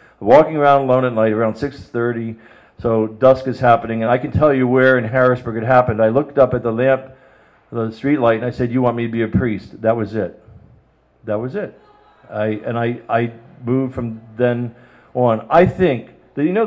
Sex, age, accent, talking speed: male, 50-69, American, 210 wpm